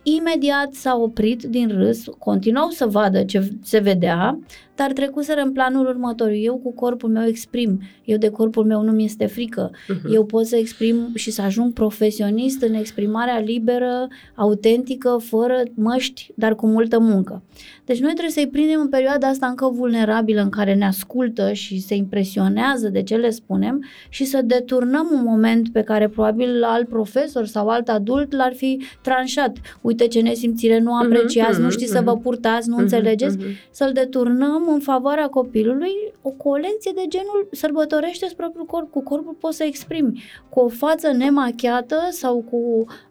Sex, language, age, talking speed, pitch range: female, Romanian, 20-39, 165 wpm, 220-270 Hz